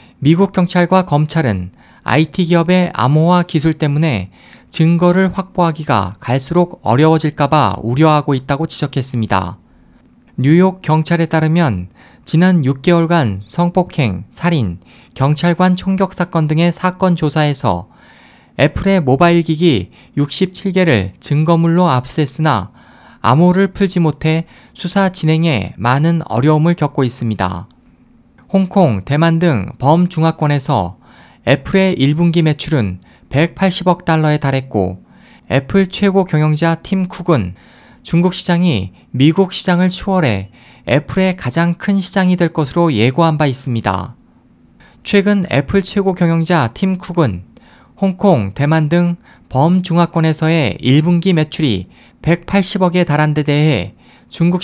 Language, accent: Korean, native